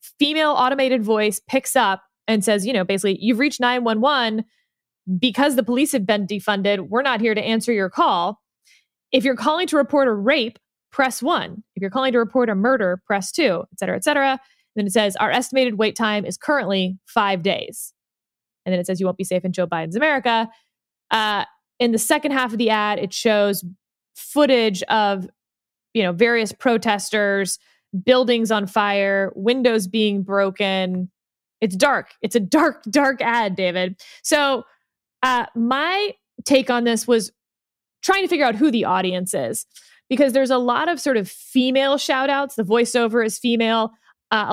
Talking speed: 175 wpm